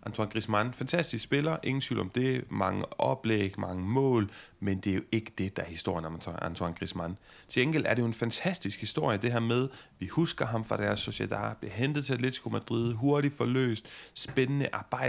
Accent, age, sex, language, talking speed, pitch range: native, 30-49, male, Danish, 190 wpm, 95-130 Hz